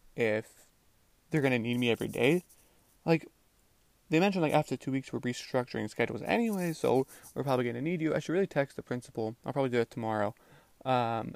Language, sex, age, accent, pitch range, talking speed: English, male, 20-39, American, 115-150 Hz, 200 wpm